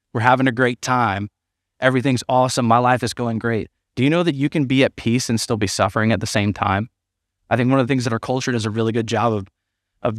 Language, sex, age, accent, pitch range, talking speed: English, male, 20-39, American, 95-135 Hz, 265 wpm